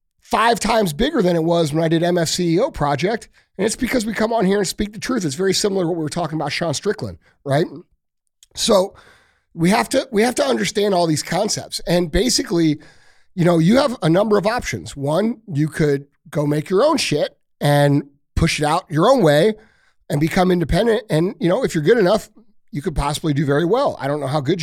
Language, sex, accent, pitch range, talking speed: English, male, American, 145-185 Hz, 220 wpm